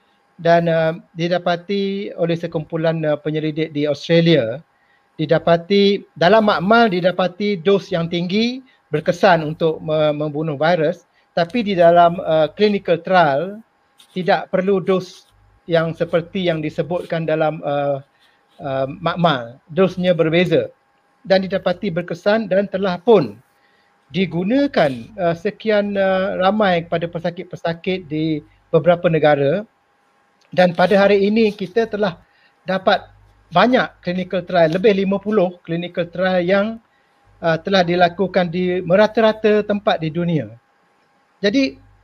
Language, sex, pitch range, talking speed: Malay, male, 165-200 Hz, 115 wpm